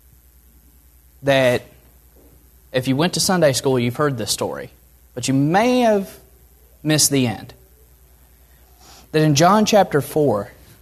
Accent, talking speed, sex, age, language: American, 130 wpm, male, 20-39, English